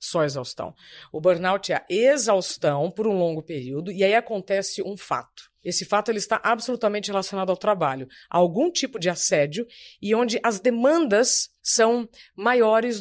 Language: Portuguese